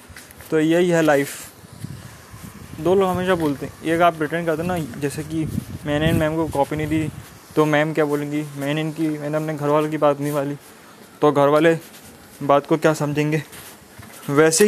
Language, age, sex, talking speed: Hindi, 20-39, male, 185 wpm